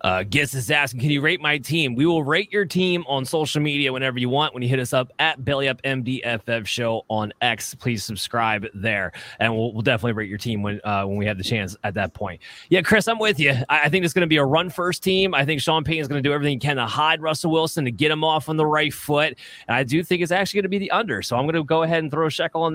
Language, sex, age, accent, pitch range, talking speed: English, male, 20-39, American, 120-165 Hz, 300 wpm